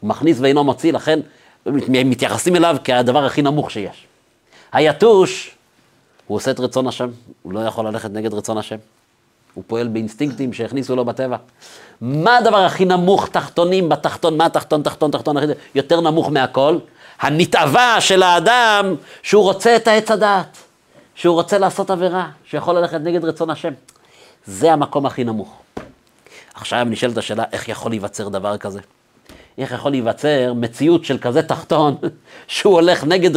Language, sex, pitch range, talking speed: Hebrew, male, 125-175 Hz, 150 wpm